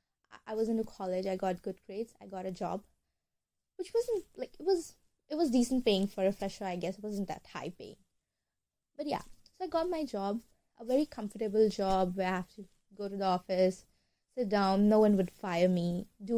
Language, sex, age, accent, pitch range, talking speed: English, female, 20-39, Indian, 190-250 Hz, 210 wpm